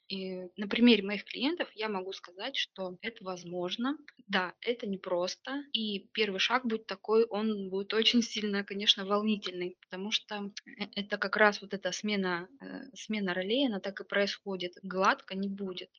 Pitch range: 185-220 Hz